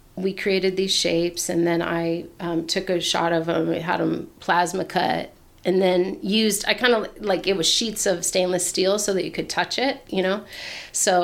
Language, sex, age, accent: English, female, 30-49, American